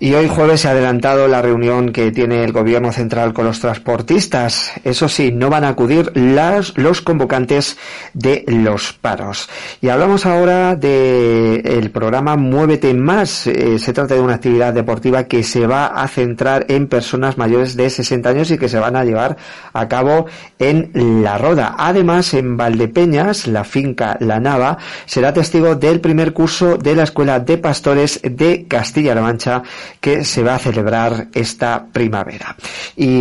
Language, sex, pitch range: Spanish, male, 115-145 Hz